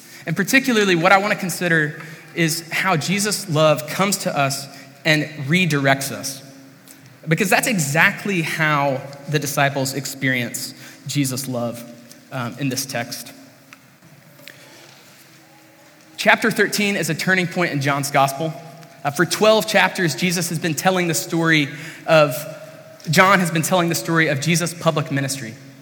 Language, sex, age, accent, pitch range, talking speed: English, male, 20-39, American, 140-175 Hz, 135 wpm